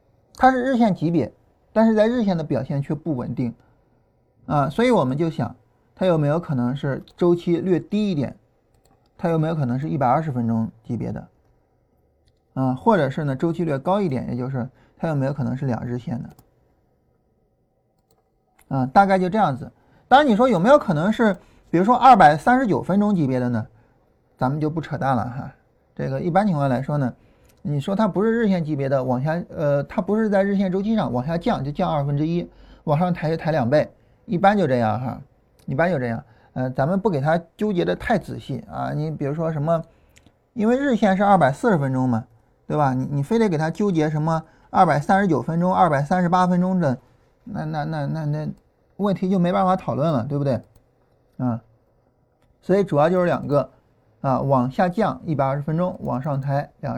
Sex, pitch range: male, 130-185 Hz